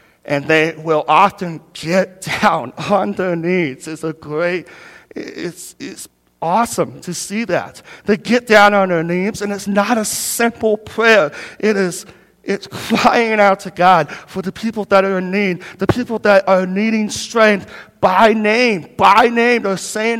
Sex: male